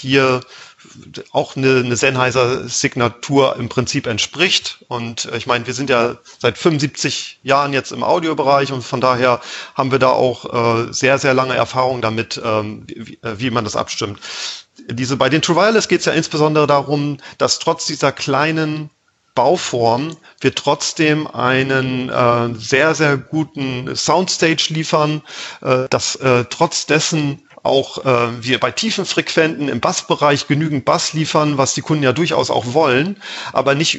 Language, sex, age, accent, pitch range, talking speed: German, male, 40-59, German, 125-155 Hz, 155 wpm